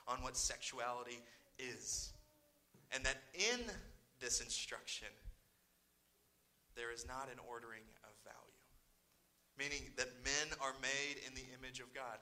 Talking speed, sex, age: 130 wpm, male, 30-49